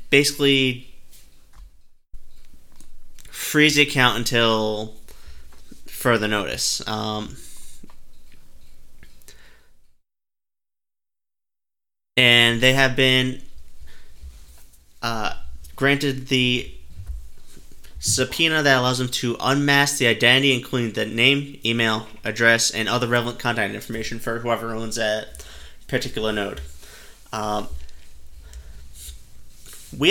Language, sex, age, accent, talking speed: English, male, 30-49, American, 85 wpm